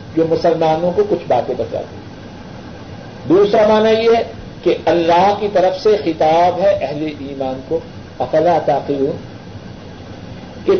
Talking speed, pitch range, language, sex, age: 130 wpm, 160-215 Hz, Urdu, male, 50-69